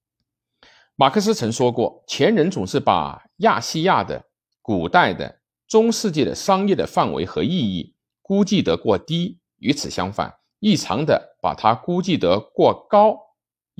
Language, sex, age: Chinese, male, 50-69